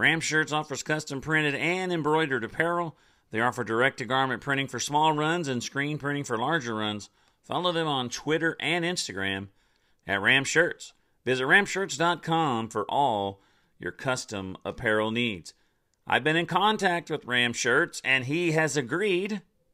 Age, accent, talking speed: 40-59, American, 150 wpm